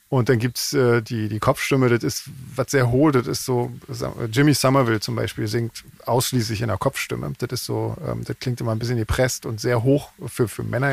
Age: 40-59